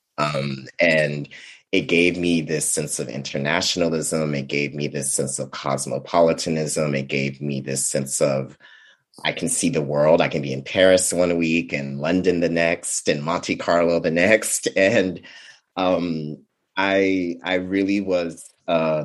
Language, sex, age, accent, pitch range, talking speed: English, male, 30-49, American, 70-85 Hz, 160 wpm